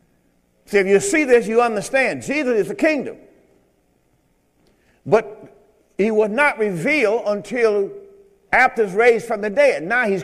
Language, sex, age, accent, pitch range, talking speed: English, male, 50-69, American, 170-245 Hz, 150 wpm